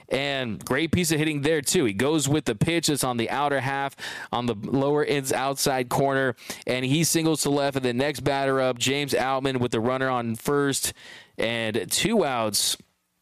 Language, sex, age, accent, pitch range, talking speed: English, male, 20-39, American, 130-150 Hz, 195 wpm